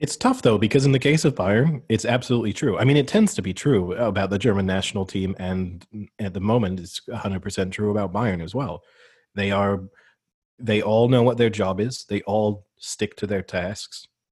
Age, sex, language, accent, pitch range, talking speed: 30-49, male, English, American, 95-110 Hz, 210 wpm